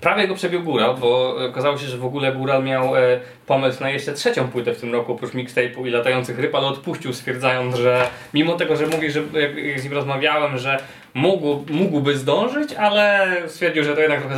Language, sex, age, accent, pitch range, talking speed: Polish, male, 20-39, native, 125-155 Hz, 190 wpm